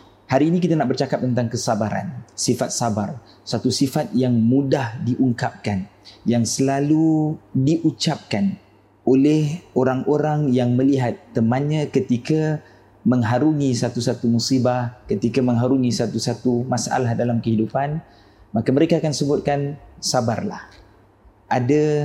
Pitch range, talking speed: 120-150 Hz, 105 wpm